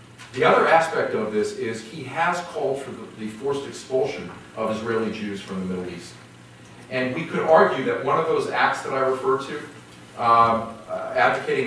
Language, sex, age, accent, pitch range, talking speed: English, male, 40-59, American, 95-130 Hz, 180 wpm